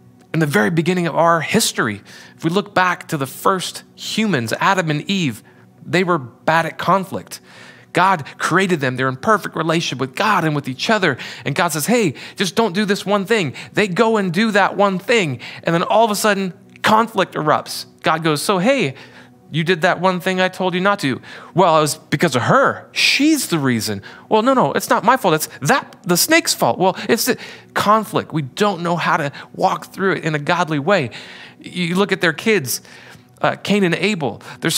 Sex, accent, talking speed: male, American, 210 wpm